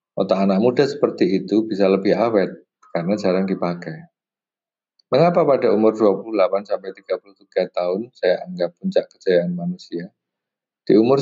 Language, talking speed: Indonesian, 125 wpm